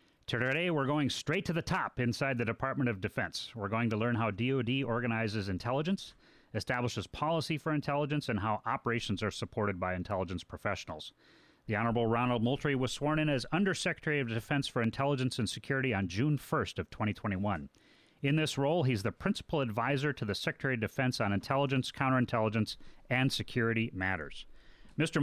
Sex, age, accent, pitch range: male, 30-49, American, 105-140 Hz